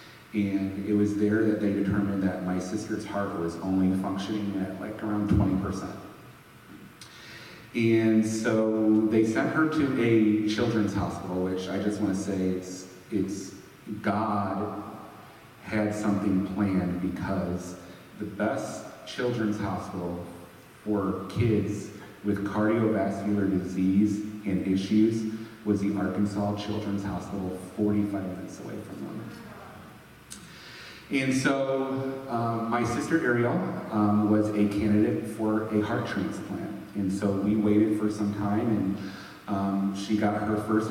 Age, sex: 30-49, male